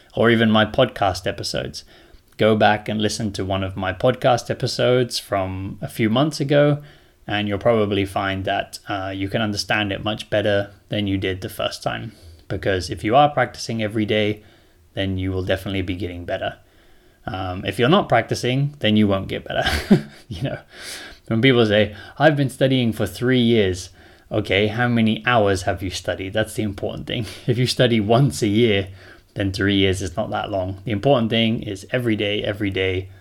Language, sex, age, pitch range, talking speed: English, male, 20-39, 95-120 Hz, 190 wpm